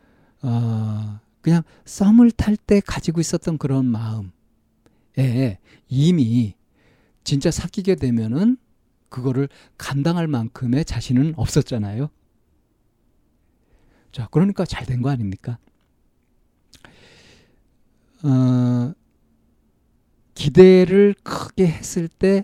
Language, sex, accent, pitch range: Korean, male, native, 115-175 Hz